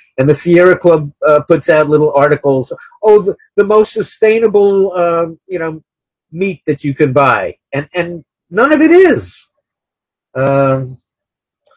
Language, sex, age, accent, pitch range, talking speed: English, male, 50-69, American, 145-200 Hz, 150 wpm